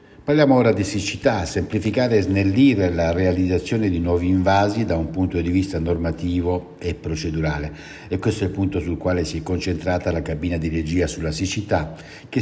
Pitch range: 80-100 Hz